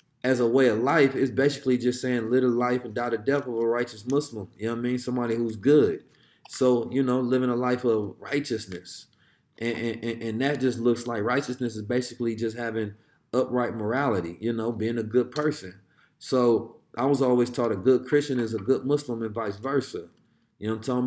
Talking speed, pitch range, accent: 215 wpm, 115-140 Hz, American